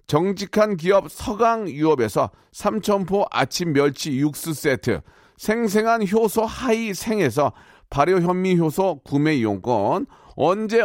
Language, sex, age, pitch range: Korean, male, 40-59, 155-205 Hz